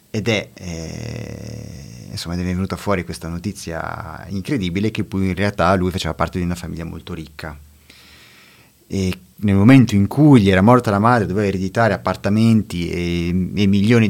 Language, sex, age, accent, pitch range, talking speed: Italian, male, 30-49, native, 90-105 Hz, 155 wpm